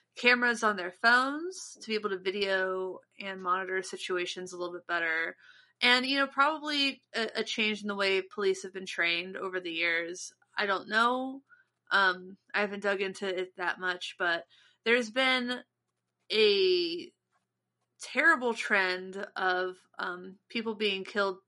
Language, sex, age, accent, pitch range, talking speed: English, female, 30-49, American, 180-220 Hz, 155 wpm